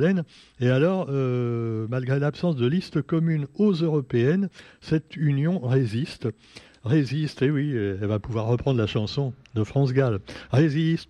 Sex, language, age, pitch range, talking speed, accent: male, French, 60-79, 110-150 Hz, 145 wpm, French